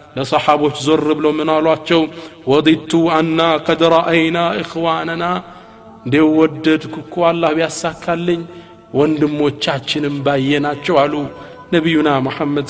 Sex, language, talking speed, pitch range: male, Amharic, 80 wpm, 170-225 Hz